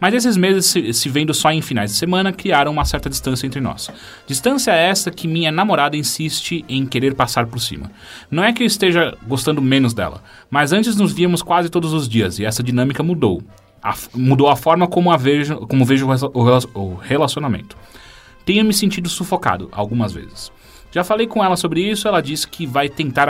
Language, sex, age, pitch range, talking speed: Portuguese, male, 30-49, 125-170 Hz, 190 wpm